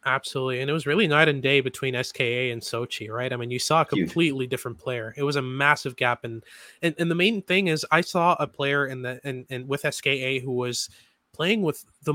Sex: male